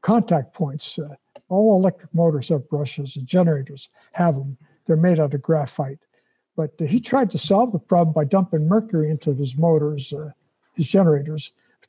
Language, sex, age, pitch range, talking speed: English, male, 60-79, 155-195 Hz, 175 wpm